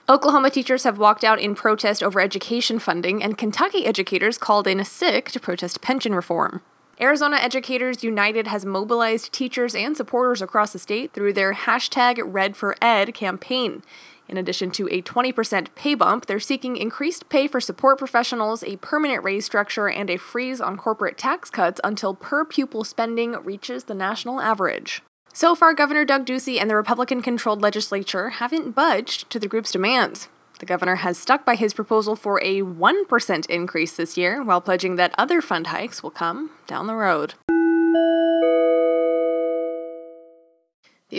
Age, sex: 20-39, female